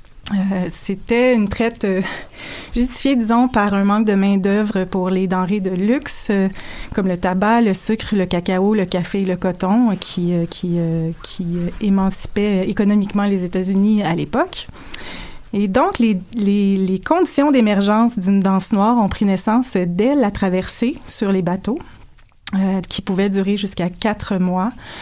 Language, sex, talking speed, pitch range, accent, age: French, female, 160 wpm, 190-220 Hz, Canadian, 30-49